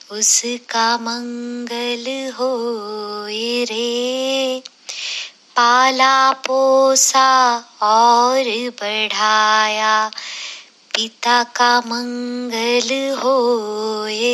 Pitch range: 220-260 Hz